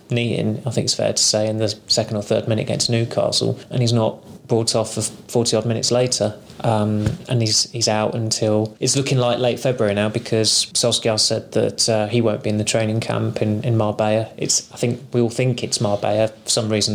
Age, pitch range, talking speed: 20-39, 105-120 Hz, 215 wpm